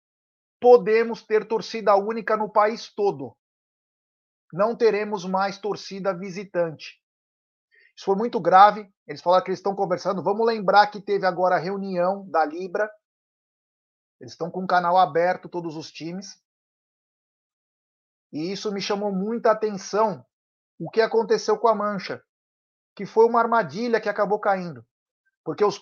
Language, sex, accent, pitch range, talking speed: Portuguese, male, Brazilian, 190-225 Hz, 140 wpm